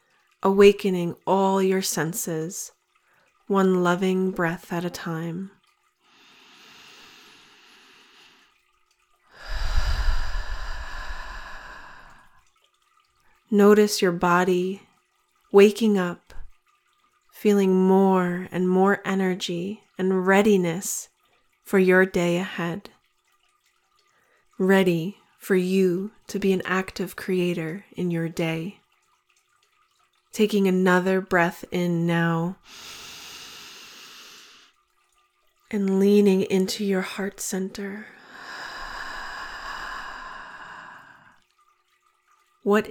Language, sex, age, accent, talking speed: English, female, 30-49, American, 70 wpm